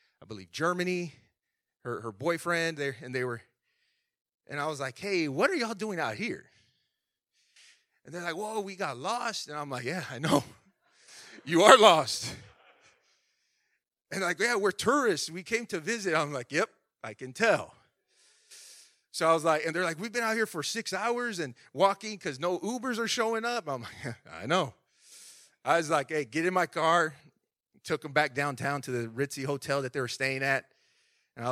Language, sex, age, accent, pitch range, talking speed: English, male, 30-49, American, 135-210 Hz, 190 wpm